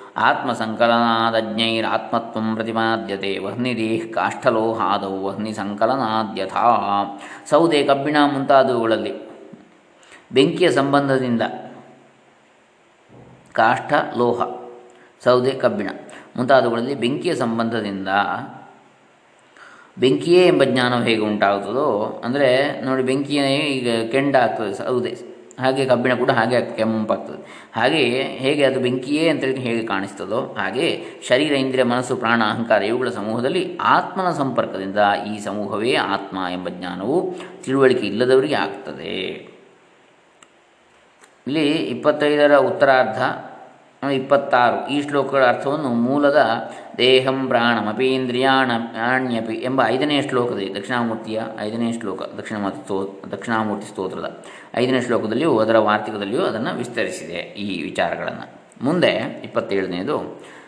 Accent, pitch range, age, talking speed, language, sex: native, 110-130 Hz, 20-39, 85 wpm, Kannada, male